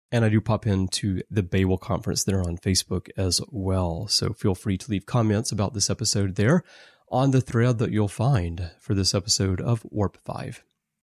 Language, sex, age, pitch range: English, male, 30-49, 95-115 Hz